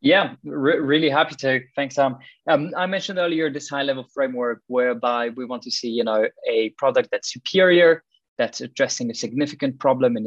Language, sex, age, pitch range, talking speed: English, male, 20-39, 125-155 Hz, 180 wpm